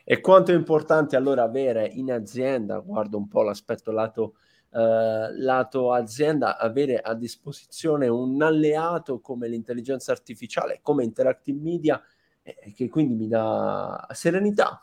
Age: 20-39